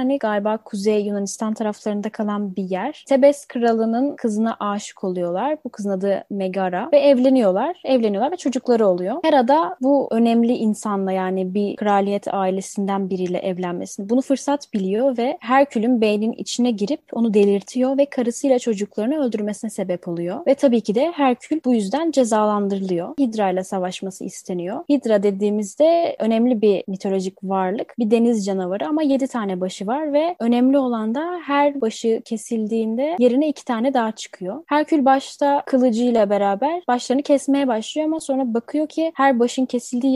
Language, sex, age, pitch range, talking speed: Turkish, female, 10-29, 205-275 Hz, 150 wpm